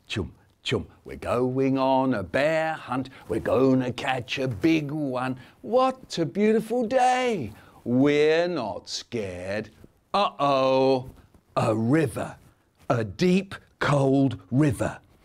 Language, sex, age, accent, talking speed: English, male, 50-69, British, 120 wpm